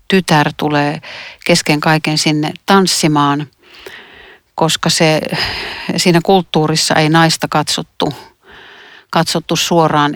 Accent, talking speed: native, 90 wpm